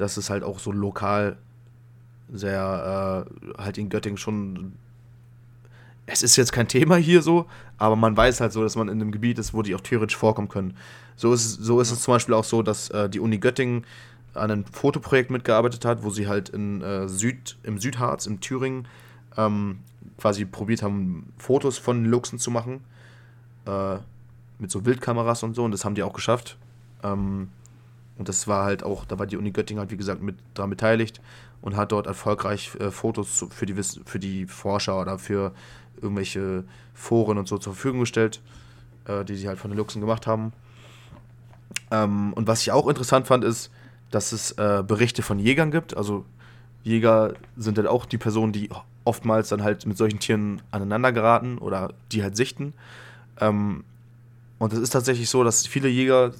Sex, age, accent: male, 20-39, German